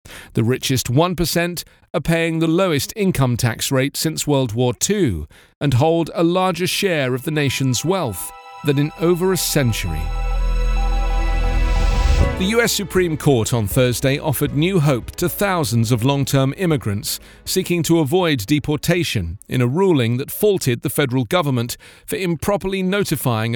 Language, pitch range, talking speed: English, 120-170 Hz, 145 wpm